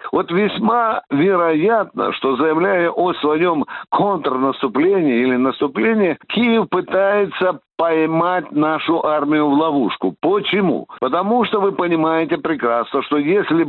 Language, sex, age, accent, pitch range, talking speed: Russian, male, 60-79, native, 150-210 Hz, 110 wpm